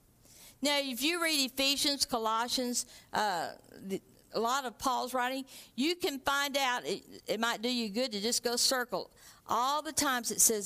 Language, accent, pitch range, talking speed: English, American, 245-325 Hz, 175 wpm